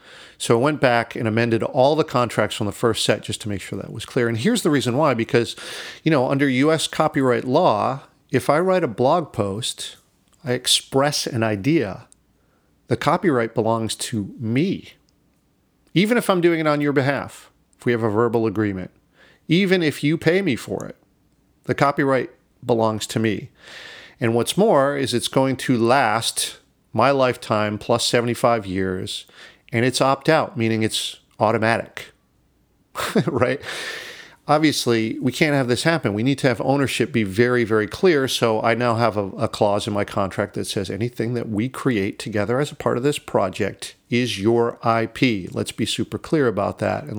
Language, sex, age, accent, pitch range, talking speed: English, male, 40-59, American, 110-145 Hz, 180 wpm